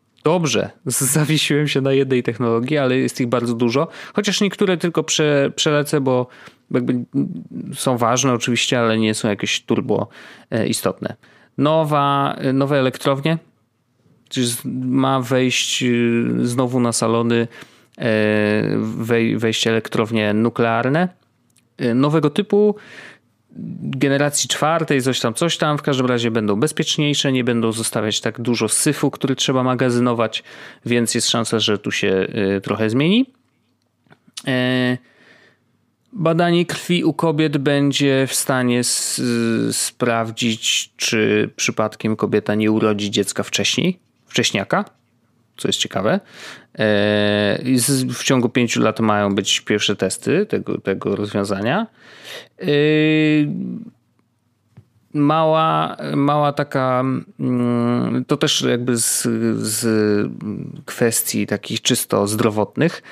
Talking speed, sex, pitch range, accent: 105 wpm, male, 115-140 Hz, native